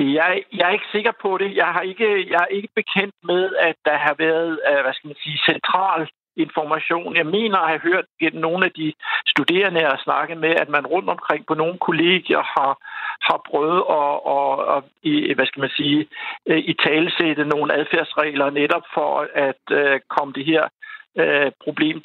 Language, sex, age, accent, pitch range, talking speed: Danish, male, 60-79, native, 150-190 Hz, 190 wpm